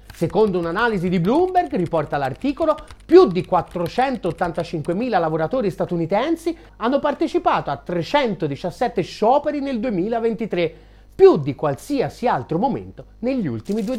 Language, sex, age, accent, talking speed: Italian, male, 30-49, native, 110 wpm